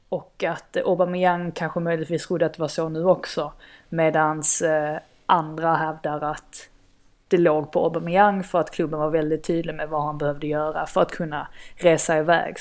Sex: female